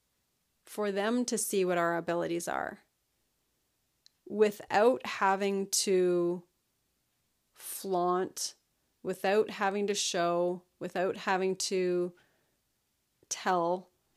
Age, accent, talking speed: 30-49, American, 85 wpm